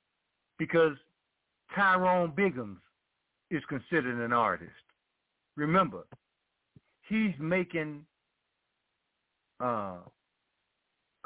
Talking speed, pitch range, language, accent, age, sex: 60 wpm, 155-200 Hz, English, American, 50-69, male